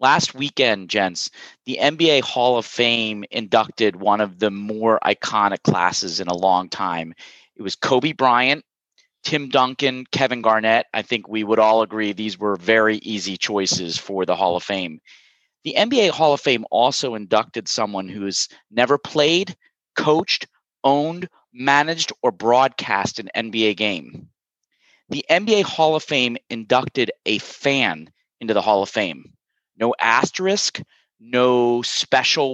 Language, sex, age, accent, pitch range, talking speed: English, male, 30-49, American, 110-140 Hz, 145 wpm